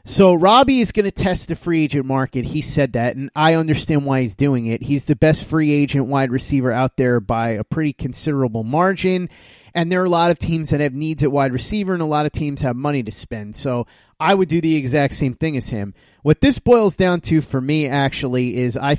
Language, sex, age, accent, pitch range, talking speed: English, male, 30-49, American, 130-160 Hz, 240 wpm